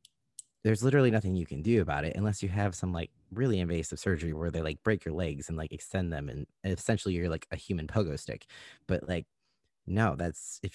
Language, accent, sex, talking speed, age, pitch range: English, American, male, 220 wpm, 30-49, 85-105 Hz